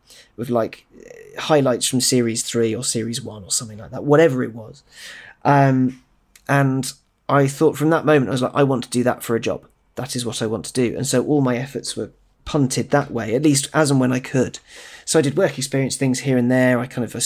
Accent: British